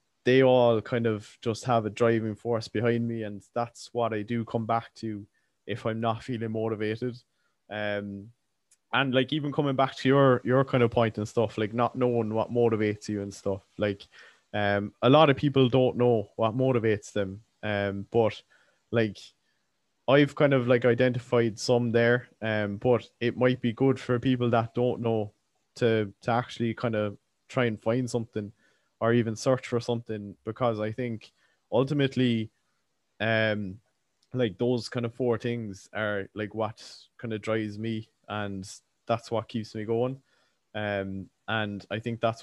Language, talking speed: English, 170 wpm